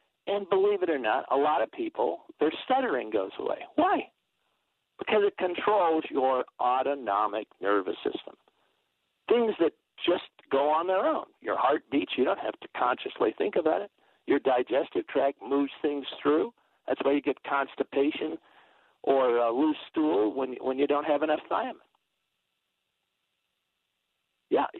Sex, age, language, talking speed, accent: male, 50-69, English, 150 wpm, American